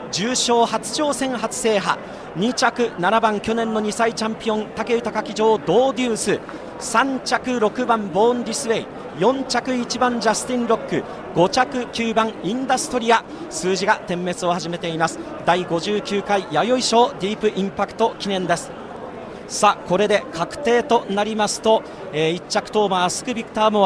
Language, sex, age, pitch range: Japanese, male, 40-59, 180-230 Hz